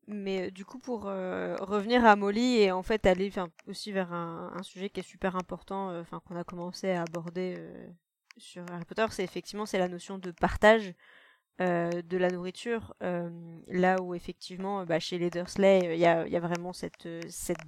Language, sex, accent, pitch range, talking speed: French, female, French, 175-205 Hz, 210 wpm